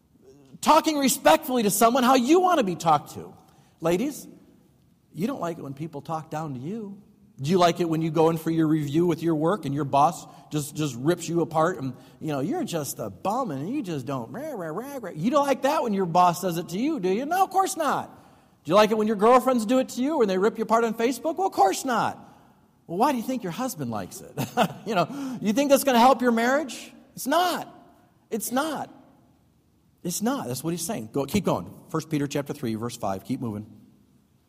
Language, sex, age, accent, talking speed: English, male, 40-59, American, 240 wpm